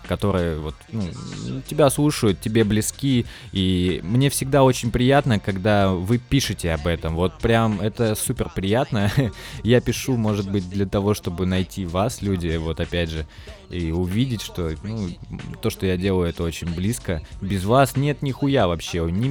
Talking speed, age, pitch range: 160 wpm, 20-39, 90-120 Hz